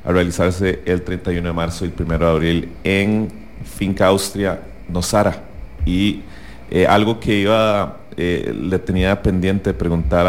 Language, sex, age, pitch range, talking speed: English, male, 30-49, 85-105 Hz, 150 wpm